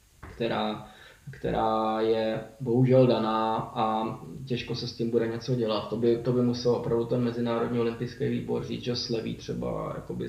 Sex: male